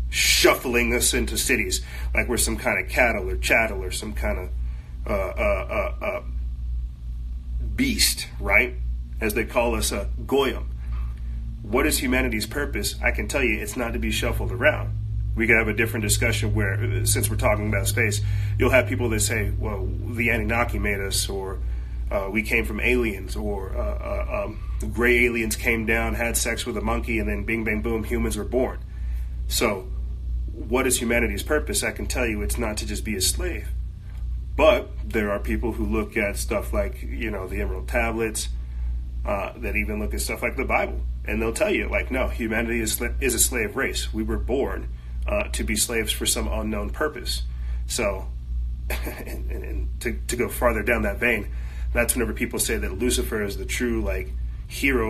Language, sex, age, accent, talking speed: English, male, 30-49, American, 190 wpm